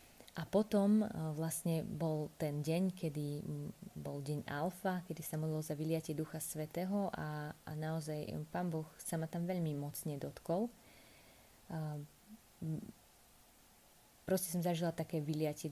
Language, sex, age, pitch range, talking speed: Slovak, female, 20-39, 155-175 Hz, 135 wpm